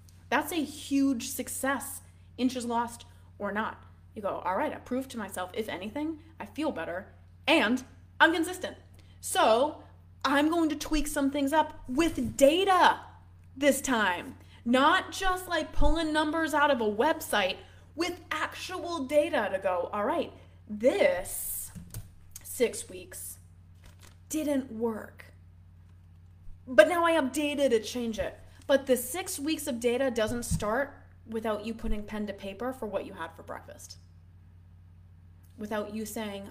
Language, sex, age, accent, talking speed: English, female, 20-39, American, 145 wpm